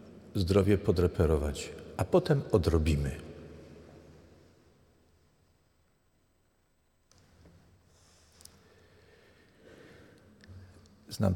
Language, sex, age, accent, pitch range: Polish, male, 50-69, native, 90-130 Hz